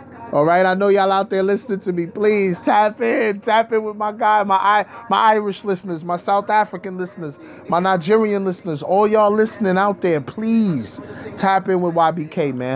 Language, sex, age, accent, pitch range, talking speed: English, male, 20-39, American, 140-190 Hz, 195 wpm